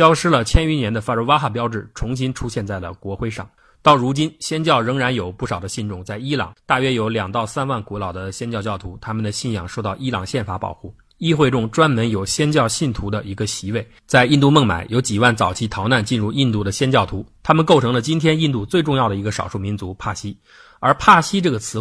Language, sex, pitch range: Chinese, male, 100-130 Hz